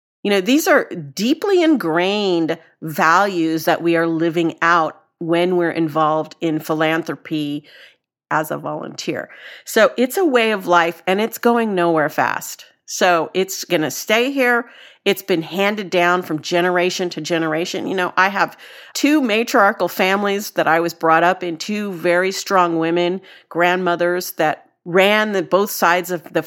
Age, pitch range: 50-69, 160-195 Hz